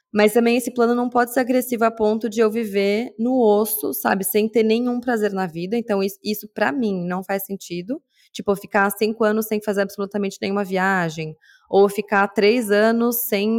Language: Portuguese